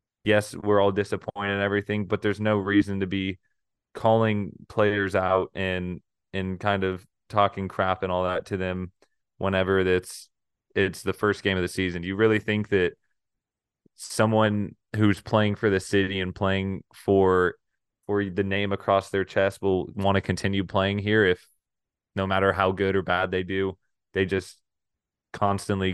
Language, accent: English, American